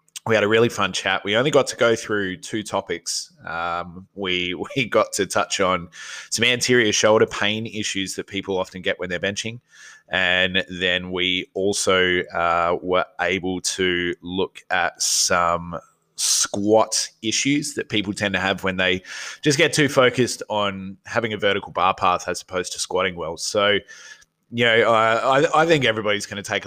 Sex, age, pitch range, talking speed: male, 20-39, 95-110 Hz, 180 wpm